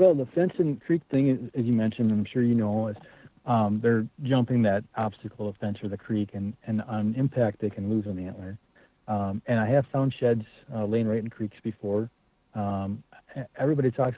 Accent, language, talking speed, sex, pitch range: American, English, 205 wpm, male, 105-120 Hz